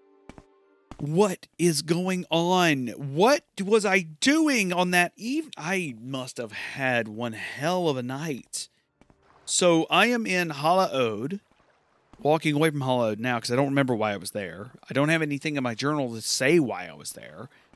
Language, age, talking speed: English, 40-59, 180 wpm